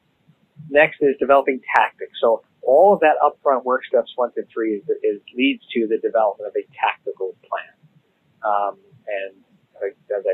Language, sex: English, male